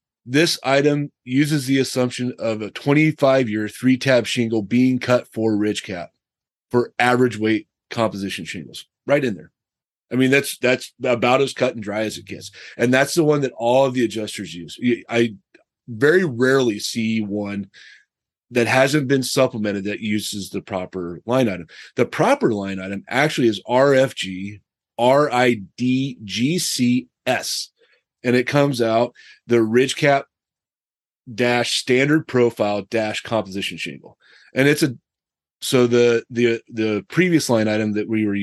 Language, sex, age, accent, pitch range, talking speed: English, male, 30-49, American, 105-130 Hz, 160 wpm